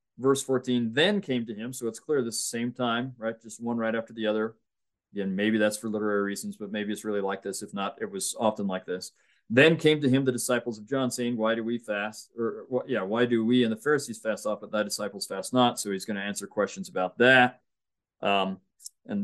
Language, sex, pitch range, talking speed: English, male, 100-125 Hz, 235 wpm